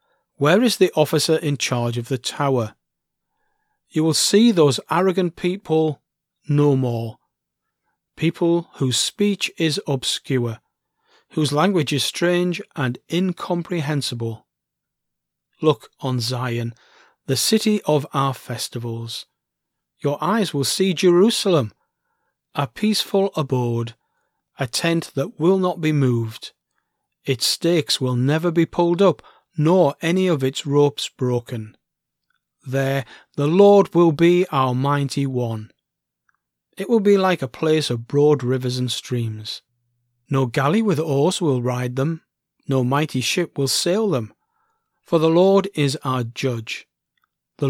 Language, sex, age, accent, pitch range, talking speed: English, male, 40-59, British, 125-175 Hz, 130 wpm